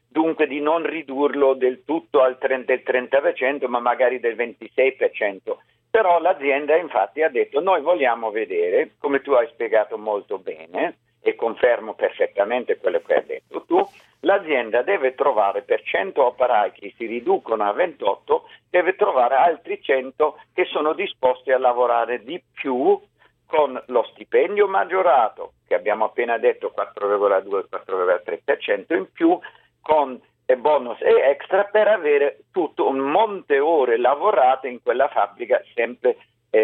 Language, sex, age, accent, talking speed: Italian, male, 50-69, native, 140 wpm